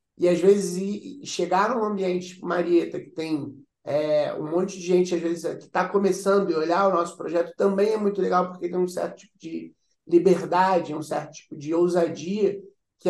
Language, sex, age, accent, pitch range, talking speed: Portuguese, male, 20-39, Brazilian, 155-190 Hz, 195 wpm